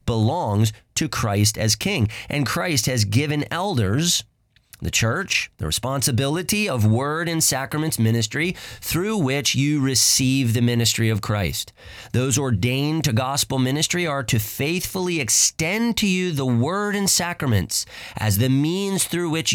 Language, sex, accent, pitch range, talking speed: English, male, American, 110-150 Hz, 145 wpm